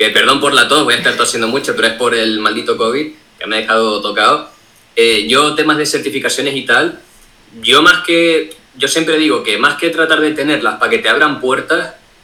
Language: Spanish